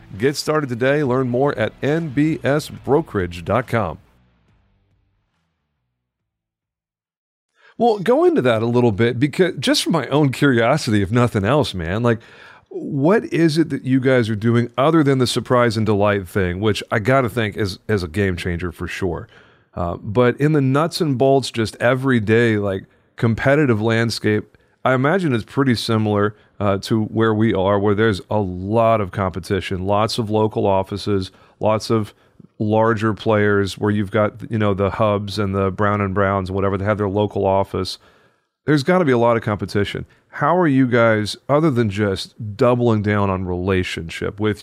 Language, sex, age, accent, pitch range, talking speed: English, male, 40-59, American, 100-125 Hz, 170 wpm